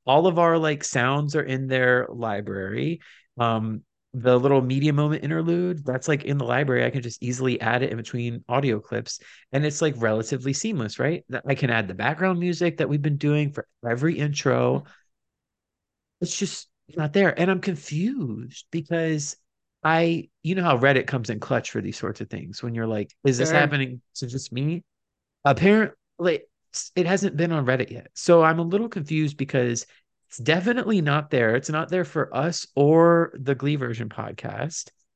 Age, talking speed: 30-49, 185 wpm